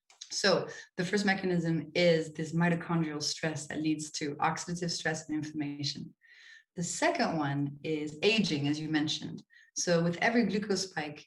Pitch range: 155-180 Hz